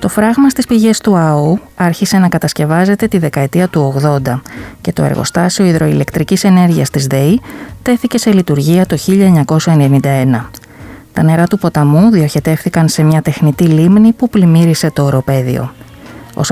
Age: 20-39